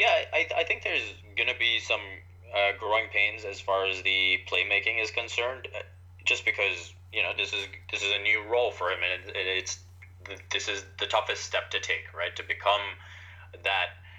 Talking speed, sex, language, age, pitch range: 185 wpm, male, English, 20-39, 90-95 Hz